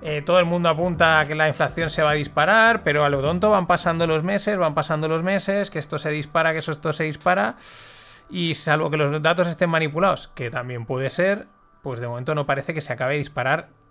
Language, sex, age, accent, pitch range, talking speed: Spanish, male, 30-49, Spanish, 140-180 Hz, 235 wpm